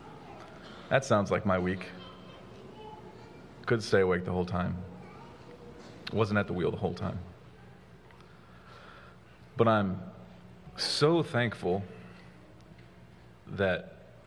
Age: 30-49